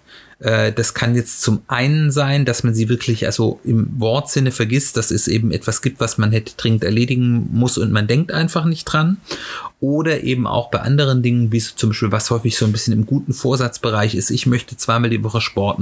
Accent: German